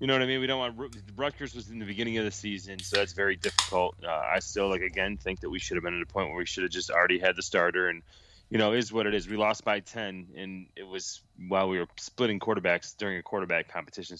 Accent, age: American, 20-39